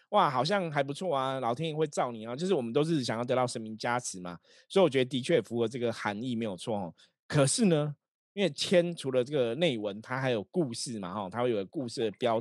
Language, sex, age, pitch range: Chinese, male, 20-39, 110-150 Hz